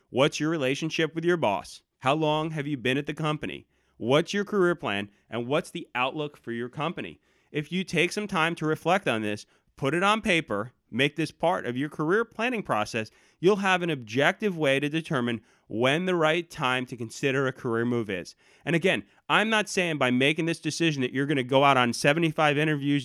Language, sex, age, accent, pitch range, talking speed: English, male, 30-49, American, 125-165 Hz, 210 wpm